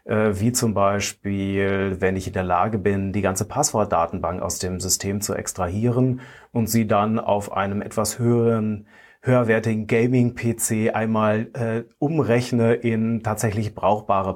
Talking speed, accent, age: 135 wpm, German, 30-49